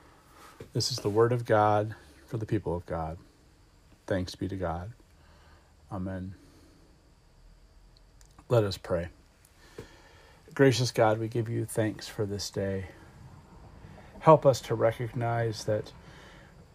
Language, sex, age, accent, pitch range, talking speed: English, male, 40-59, American, 85-115 Hz, 120 wpm